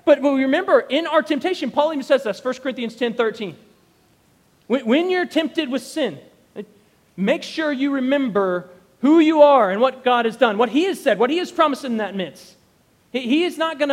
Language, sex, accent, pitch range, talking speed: English, male, American, 190-295 Hz, 200 wpm